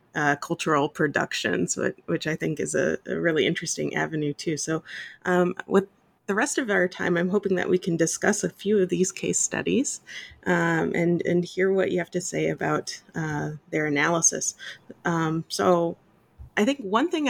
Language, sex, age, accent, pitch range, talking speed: English, female, 30-49, American, 160-200 Hz, 185 wpm